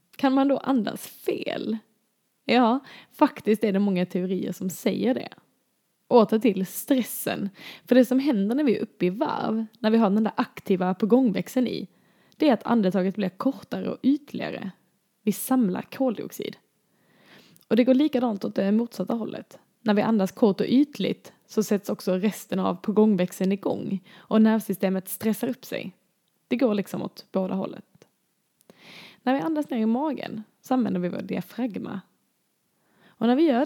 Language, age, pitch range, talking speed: Swedish, 10-29, 190-240 Hz, 165 wpm